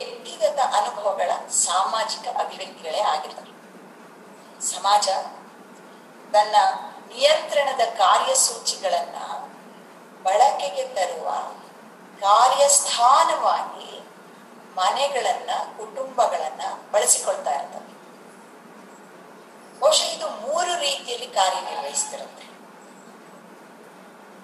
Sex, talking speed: female, 40 wpm